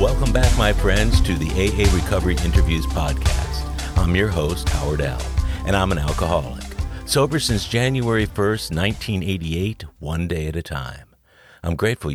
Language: English